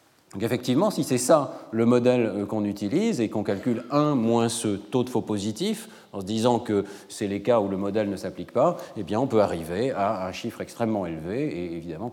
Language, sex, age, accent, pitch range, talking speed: French, male, 40-59, French, 105-145 Hz, 220 wpm